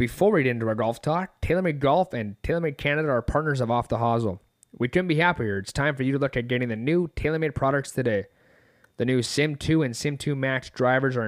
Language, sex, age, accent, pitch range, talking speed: English, male, 20-39, American, 120-145 Hz, 240 wpm